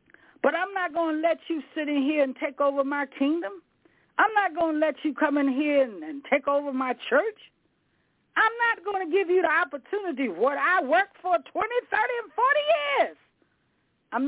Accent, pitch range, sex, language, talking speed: American, 235-310 Hz, female, English, 200 wpm